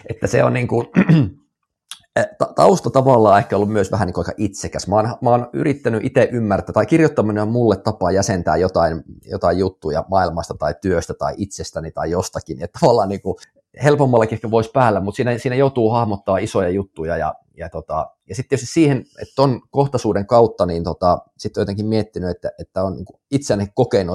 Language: Finnish